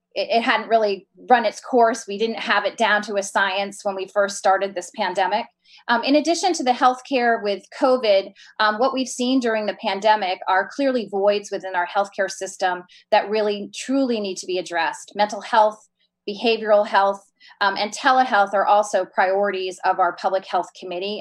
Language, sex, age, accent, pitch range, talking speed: English, female, 30-49, American, 190-230 Hz, 180 wpm